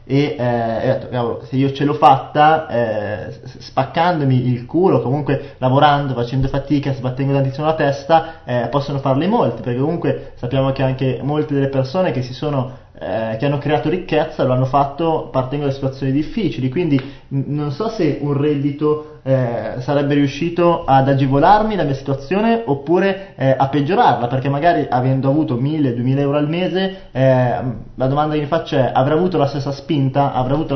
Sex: male